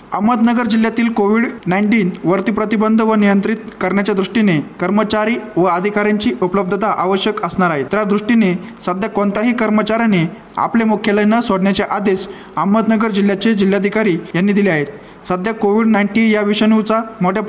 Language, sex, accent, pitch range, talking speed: Marathi, male, native, 190-220 Hz, 130 wpm